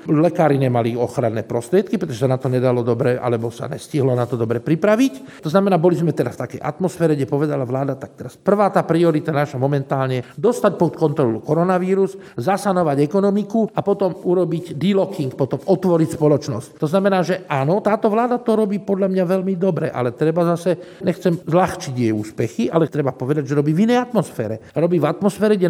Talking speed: 185 wpm